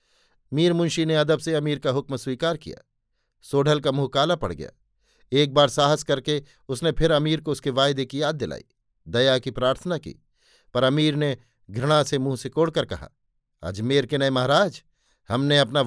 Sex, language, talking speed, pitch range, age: male, Hindi, 180 wpm, 130-155 Hz, 50-69